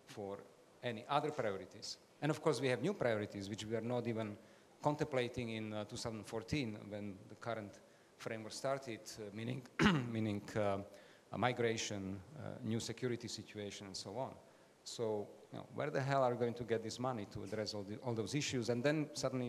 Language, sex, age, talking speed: English, male, 40-59, 180 wpm